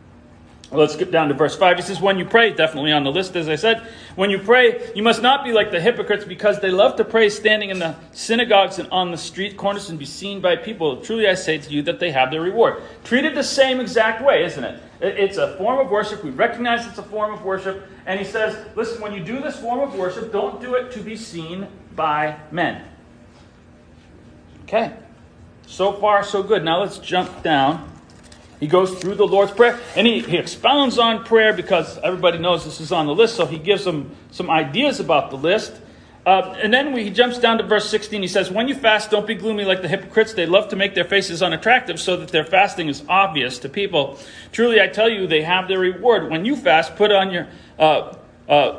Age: 40-59